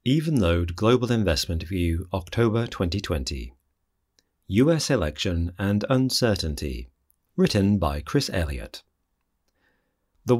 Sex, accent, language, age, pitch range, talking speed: male, British, English, 40-59, 85-120 Hz, 90 wpm